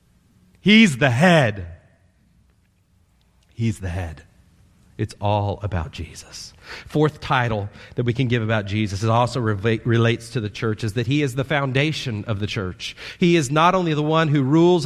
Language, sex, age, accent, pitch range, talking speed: English, male, 40-59, American, 145-240 Hz, 165 wpm